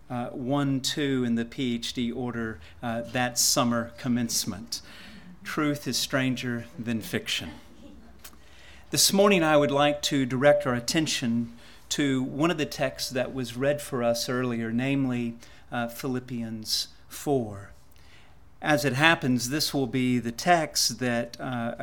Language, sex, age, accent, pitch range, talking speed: English, male, 40-59, American, 115-145 Hz, 135 wpm